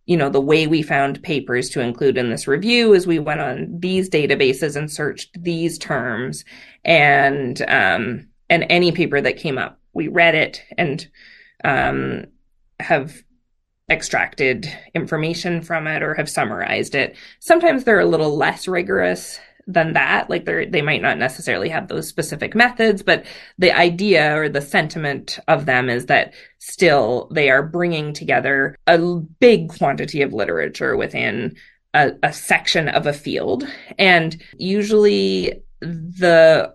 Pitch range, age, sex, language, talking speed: 150-190 Hz, 20-39, female, English, 150 wpm